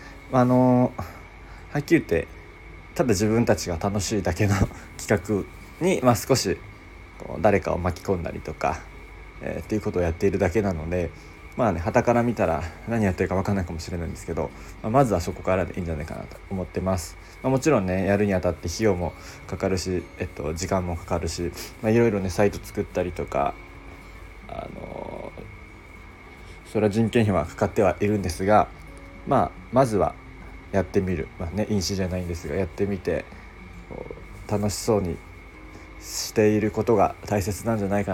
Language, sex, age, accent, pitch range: Japanese, male, 20-39, native, 85-105 Hz